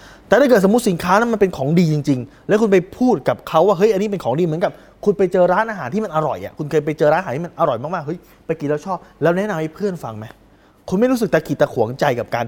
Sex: male